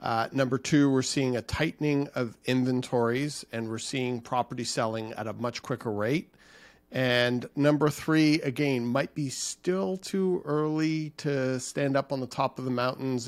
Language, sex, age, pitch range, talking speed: English, male, 40-59, 120-140 Hz, 165 wpm